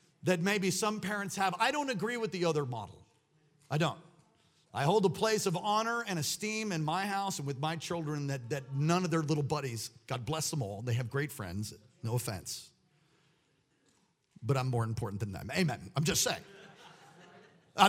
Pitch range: 135-210 Hz